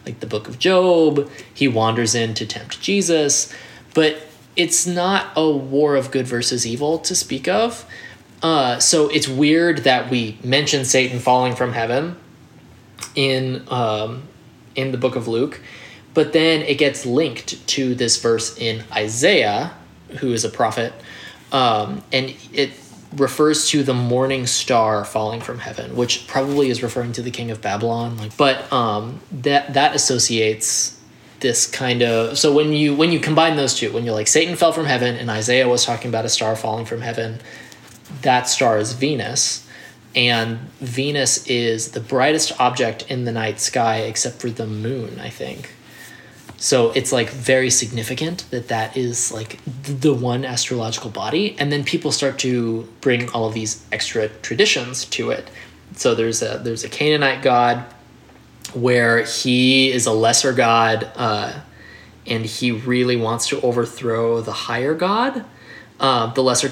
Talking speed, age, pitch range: 165 wpm, 20-39, 115-140 Hz